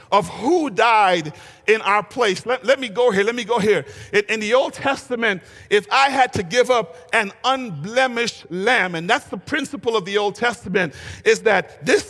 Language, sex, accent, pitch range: English, male, American, 200-255 Hz